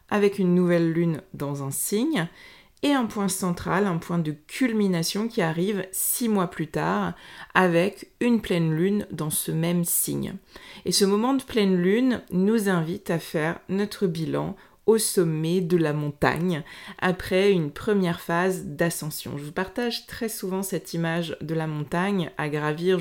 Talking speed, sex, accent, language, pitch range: 165 wpm, female, French, French, 165-200 Hz